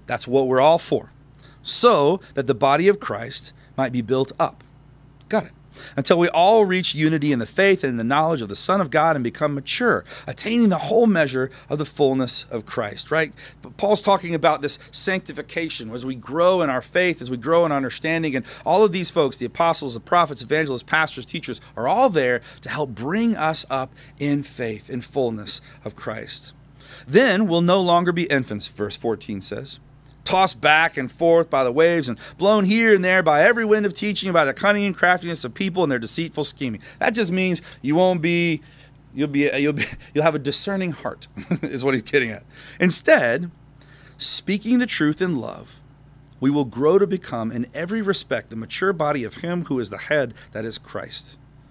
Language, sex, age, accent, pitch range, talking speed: English, male, 30-49, American, 135-175 Hz, 200 wpm